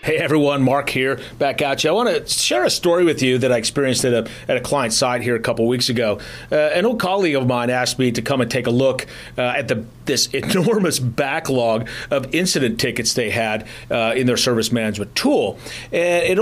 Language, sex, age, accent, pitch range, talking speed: English, male, 40-59, American, 120-165 Hz, 215 wpm